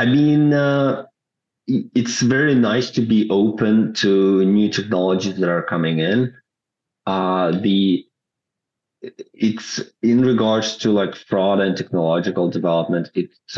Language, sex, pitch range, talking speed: English, male, 80-100 Hz, 125 wpm